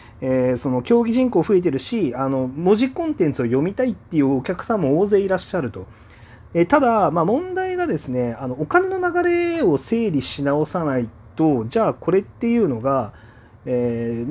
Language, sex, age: Japanese, male, 30-49